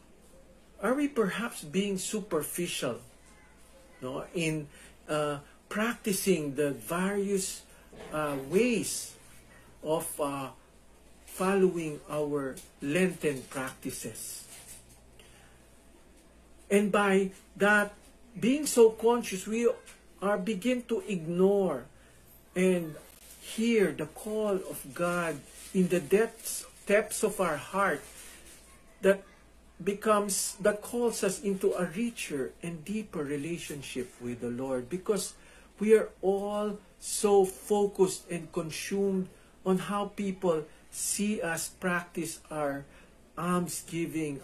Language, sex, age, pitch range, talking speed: English, male, 50-69, 155-205 Hz, 100 wpm